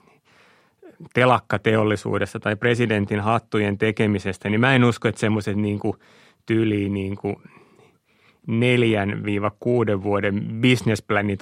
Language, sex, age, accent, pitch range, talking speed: Finnish, male, 30-49, native, 105-120 Hz, 105 wpm